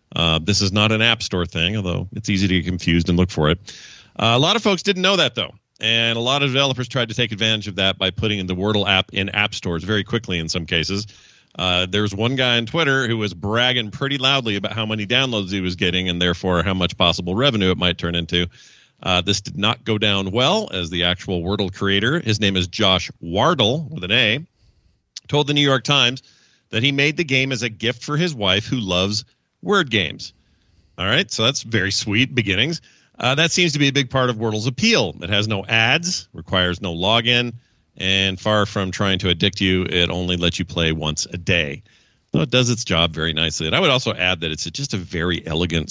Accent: American